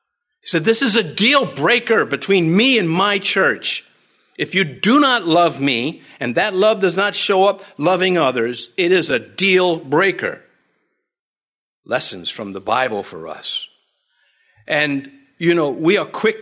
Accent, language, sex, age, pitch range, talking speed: American, English, male, 50-69, 150-220 Hz, 160 wpm